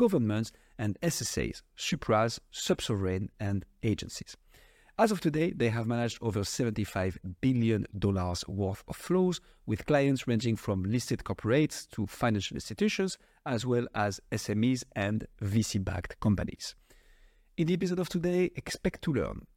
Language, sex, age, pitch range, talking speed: English, male, 50-69, 100-150 Hz, 130 wpm